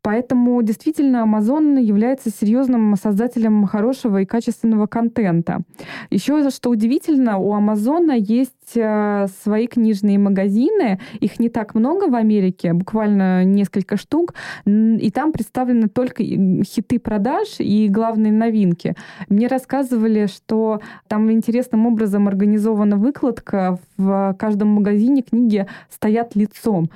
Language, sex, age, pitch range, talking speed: Russian, female, 20-39, 200-235 Hz, 115 wpm